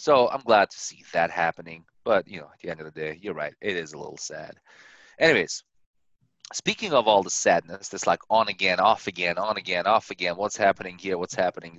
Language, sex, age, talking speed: English, male, 30-49, 225 wpm